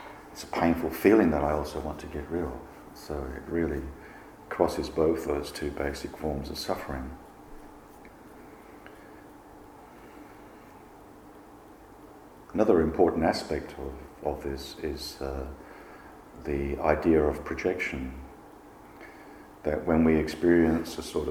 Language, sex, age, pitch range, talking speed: English, male, 50-69, 70-80 Hz, 115 wpm